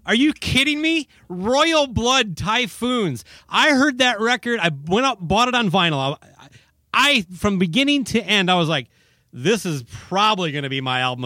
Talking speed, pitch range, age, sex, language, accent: 180 wpm, 145-200 Hz, 30-49, male, English, American